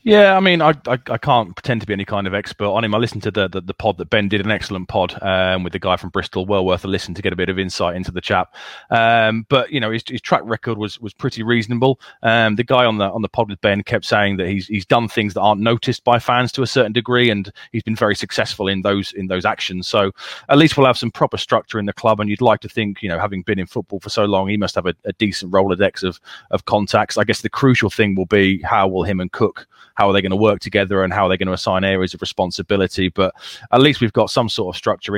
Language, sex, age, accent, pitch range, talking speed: English, male, 30-49, British, 95-110 Hz, 285 wpm